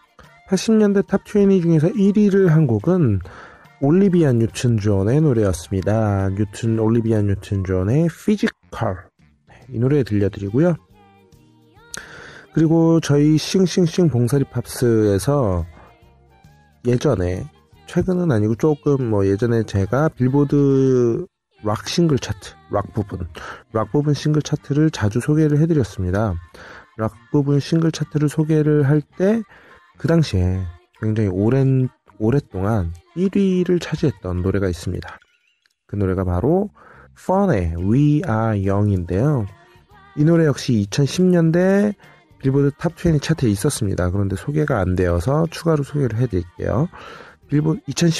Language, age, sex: Korean, 30-49, male